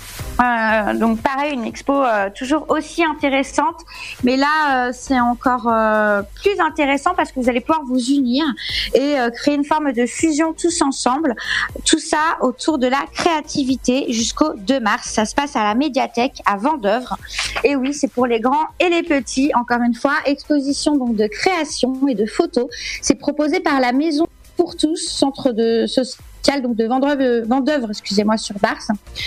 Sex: female